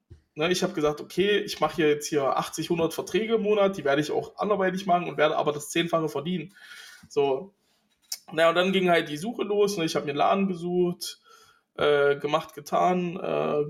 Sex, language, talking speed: male, German, 205 wpm